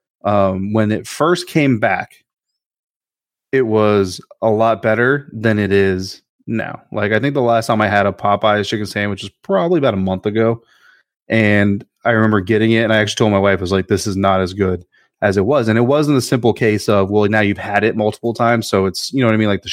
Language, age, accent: English, 20-39, American